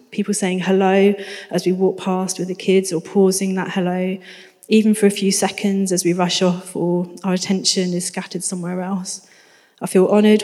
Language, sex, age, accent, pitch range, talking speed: English, female, 30-49, British, 190-205 Hz, 190 wpm